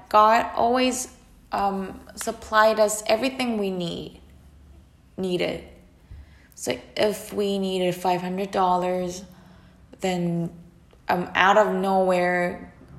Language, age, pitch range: English, 10-29, 170-200 Hz